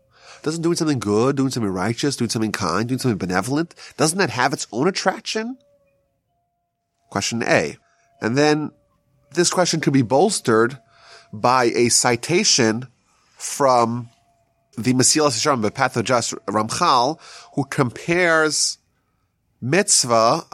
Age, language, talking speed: 30-49, English, 125 wpm